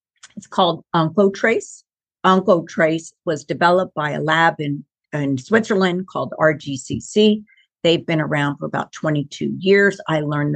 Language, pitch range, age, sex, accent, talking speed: English, 155-195 Hz, 50-69, female, American, 130 wpm